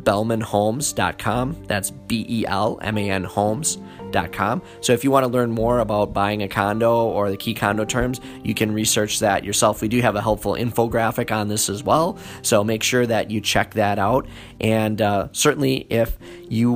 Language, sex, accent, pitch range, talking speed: English, male, American, 110-130 Hz, 190 wpm